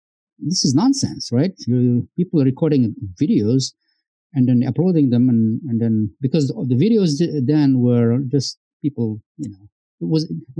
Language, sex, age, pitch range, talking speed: English, male, 50-69, 120-155 Hz, 160 wpm